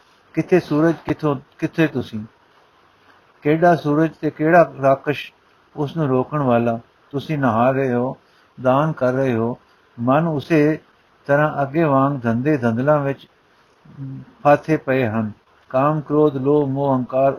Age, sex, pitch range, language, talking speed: 60-79, male, 130-155 Hz, Punjabi, 65 wpm